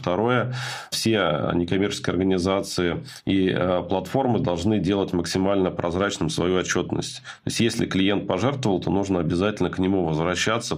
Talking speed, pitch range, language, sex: 130 wpm, 85-105 Hz, Russian, male